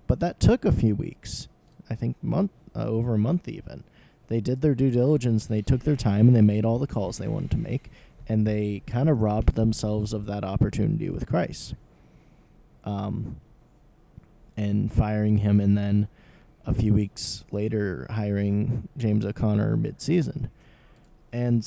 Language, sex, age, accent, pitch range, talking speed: English, male, 20-39, American, 105-125 Hz, 170 wpm